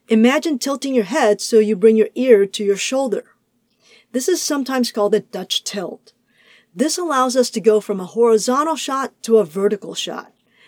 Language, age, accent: English, 50-69, American